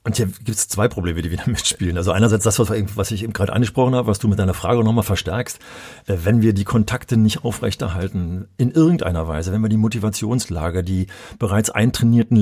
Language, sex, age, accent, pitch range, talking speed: German, male, 40-59, German, 100-135 Hz, 200 wpm